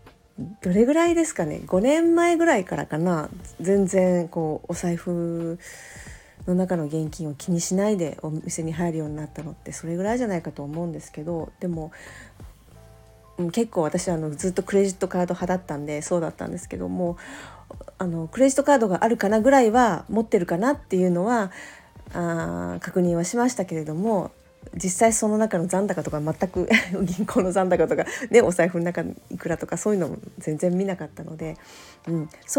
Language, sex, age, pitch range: Japanese, female, 40-59, 160-205 Hz